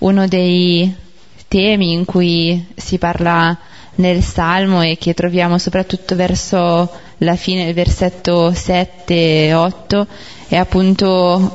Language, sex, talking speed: Italian, female, 115 wpm